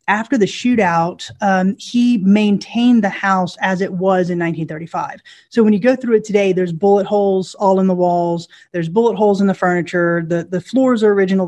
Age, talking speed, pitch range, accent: 30-49, 200 wpm, 175-205 Hz, American